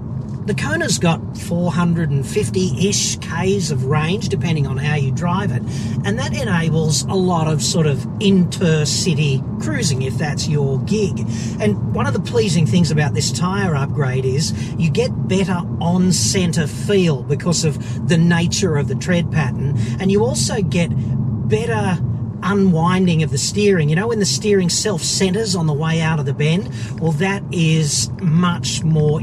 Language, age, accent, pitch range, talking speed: English, 40-59, Australian, 130-175 Hz, 160 wpm